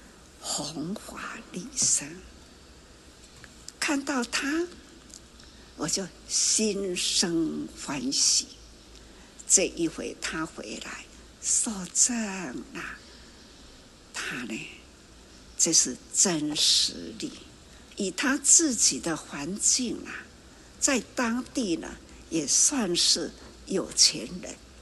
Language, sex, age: Chinese, female, 60-79